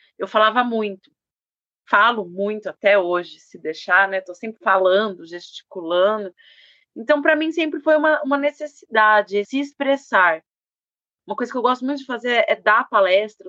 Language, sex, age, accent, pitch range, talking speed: Portuguese, female, 30-49, Brazilian, 205-270 Hz, 160 wpm